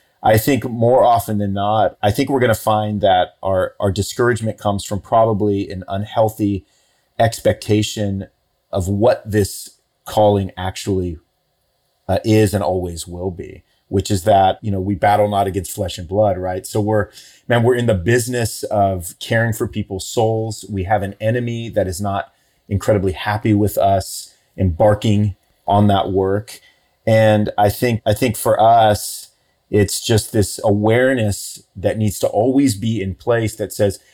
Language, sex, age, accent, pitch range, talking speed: English, male, 30-49, American, 100-115 Hz, 165 wpm